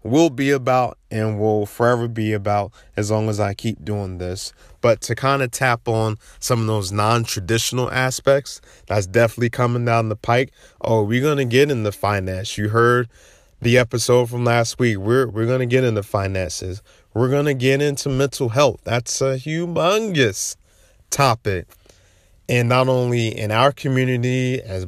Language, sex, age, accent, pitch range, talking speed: English, male, 20-39, American, 110-135 Hz, 165 wpm